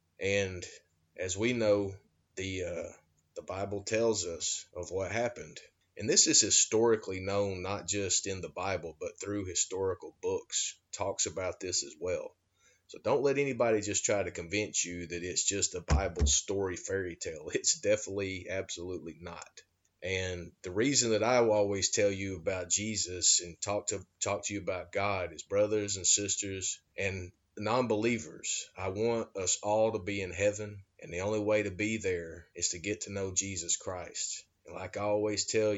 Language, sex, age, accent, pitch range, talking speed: English, male, 30-49, American, 95-115 Hz, 175 wpm